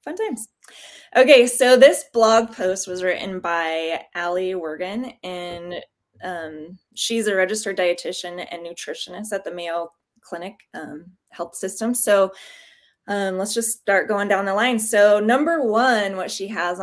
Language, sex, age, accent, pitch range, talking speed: English, female, 20-39, American, 175-215 Hz, 150 wpm